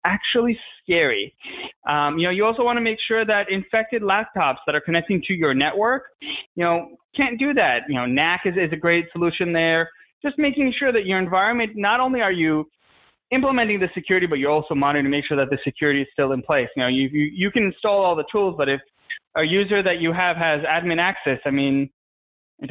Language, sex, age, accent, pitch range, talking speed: English, male, 20-39, American, 155-220 Hz, 220 wpm